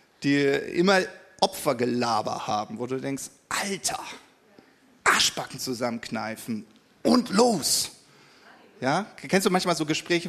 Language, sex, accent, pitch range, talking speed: German, male, German, 135-210 Hz, 105 wpm